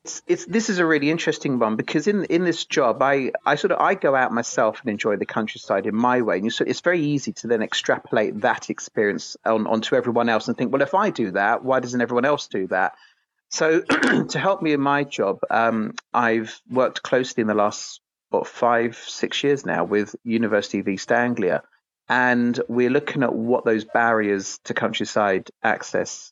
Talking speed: 205 wpm